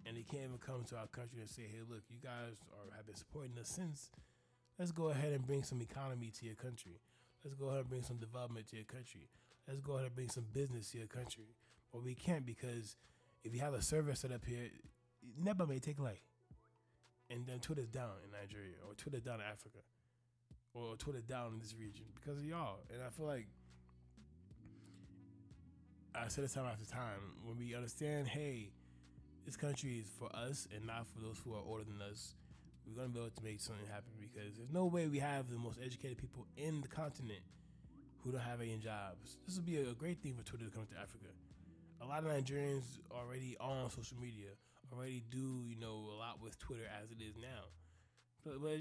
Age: 20-39